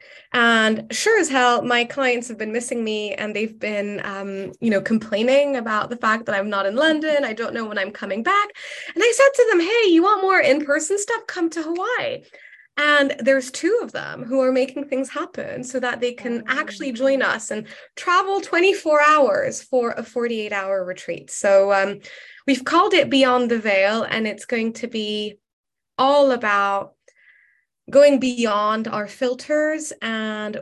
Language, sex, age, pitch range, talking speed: English, female, 20-39, 210-275 Hz, 180 wpm